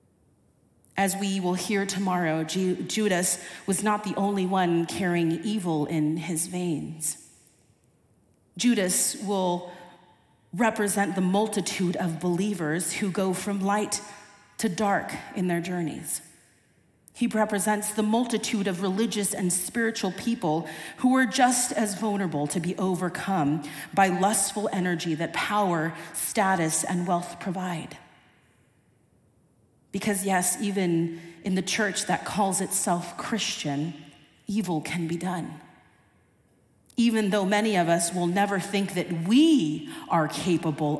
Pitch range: 170-215 Hz